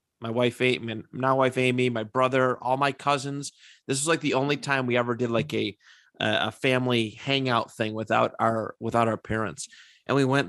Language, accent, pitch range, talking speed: English, American, 115-135 Hz, 195 wpm